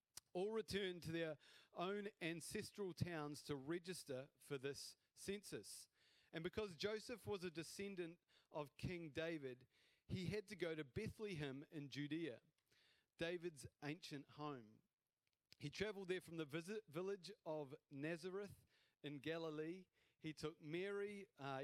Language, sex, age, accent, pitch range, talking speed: English, male, 40-59, Australian, 150-195 Hz, 130 wpm